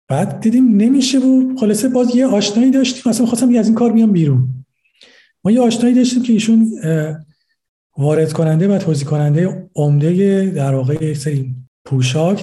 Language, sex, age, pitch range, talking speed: Persian, male, 50-69, 145-225 Hz, 150 wpm